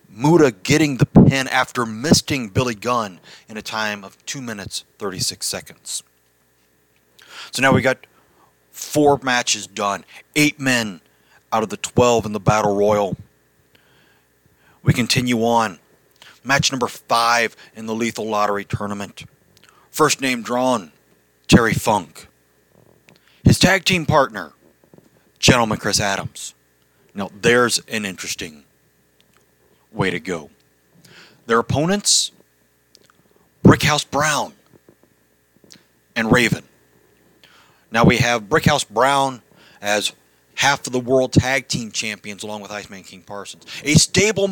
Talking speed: 120 wpm